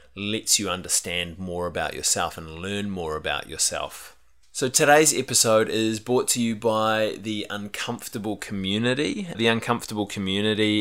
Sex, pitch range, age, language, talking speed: male, 95-110 Hz, 20-39, English, 140 wpm